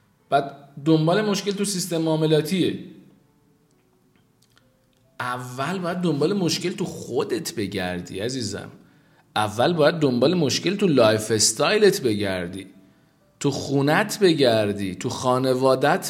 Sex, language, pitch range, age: male, Persian, 110-160 Hz, 50-69